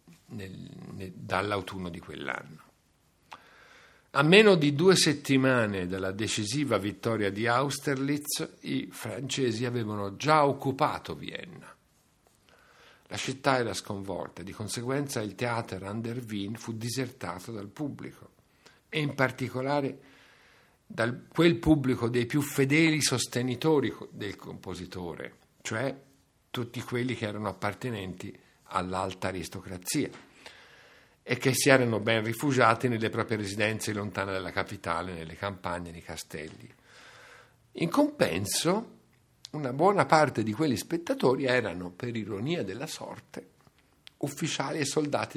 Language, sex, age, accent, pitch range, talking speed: Italian, male, 60-79, native, 100-135 Hz, 115 wpm